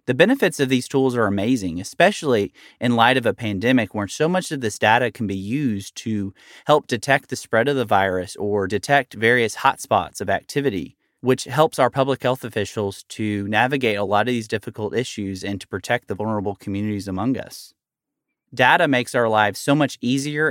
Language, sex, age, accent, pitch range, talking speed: English, male, 30-49, American, 105-135 Hz, 190 wpm